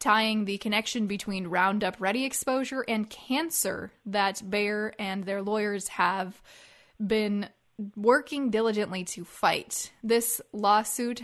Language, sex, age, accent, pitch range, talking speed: English, female, 20-39, American, 195-230 Hz, 115 wpm